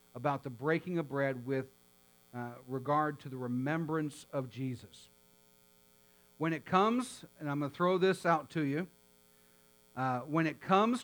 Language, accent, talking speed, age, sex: English, American, 160 wpm, 50-69, male